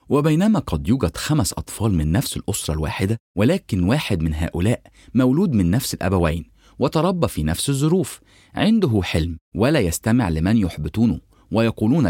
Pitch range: 85-125 Hz